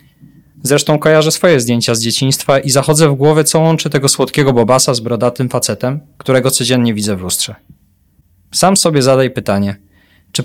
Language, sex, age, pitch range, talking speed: Polish, male, 20-39, 105-150 Hz, 160 wpm